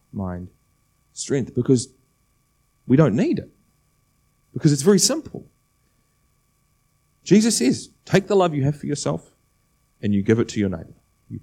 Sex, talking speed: male, 145 wpm